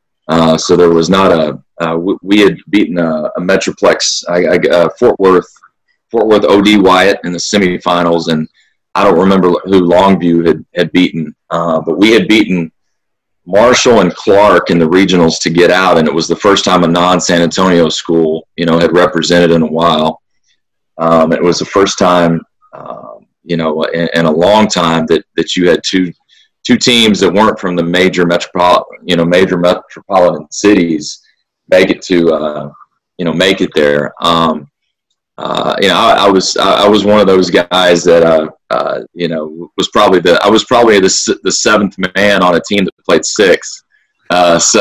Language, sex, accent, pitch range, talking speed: English, male, American, 85-95 Hz, 185 wpm